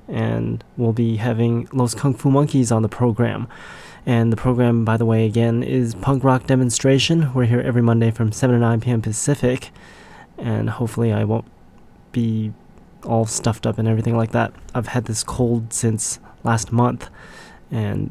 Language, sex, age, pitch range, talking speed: English, male, 20-39, 115-135 Hz, 170 wpm